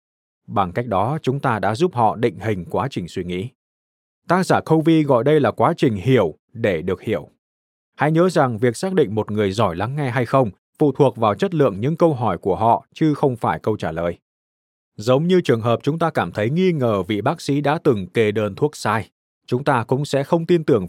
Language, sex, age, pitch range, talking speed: Vietnamese, male, 20-39, 100-145 Hz, 235 wpm